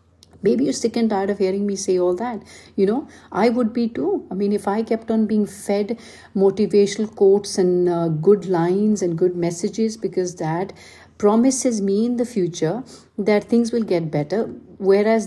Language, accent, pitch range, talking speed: English, Indian, 185-220 Hz, 185 wpm